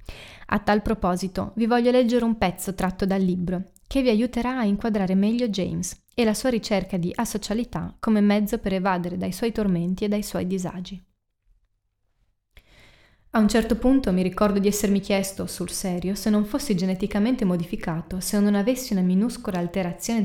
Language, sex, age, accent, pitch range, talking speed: Italian, female, 20-39, native, 185-225 Hz, 170 wpm